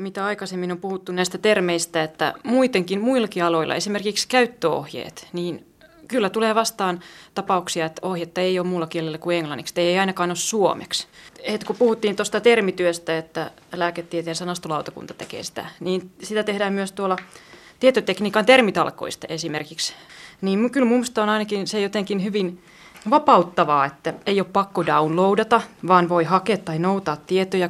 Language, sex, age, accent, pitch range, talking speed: Finnish, female, 20-39, native, 170-200 Hz, 145 wpm